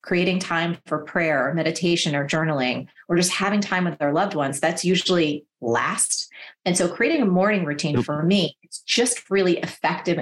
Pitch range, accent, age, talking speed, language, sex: 170-220 Hz, American, 30-49, 180 wpm, English, female